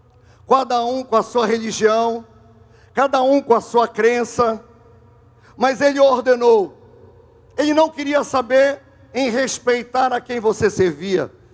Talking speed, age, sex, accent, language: 130 wpm, 50-69, male, Brazilian, Portuguese